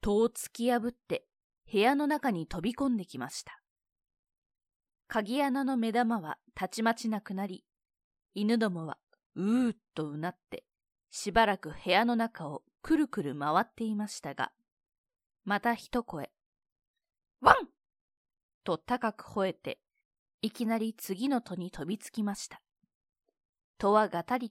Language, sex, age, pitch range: Japanese, female, 20-39, 180-250 Hz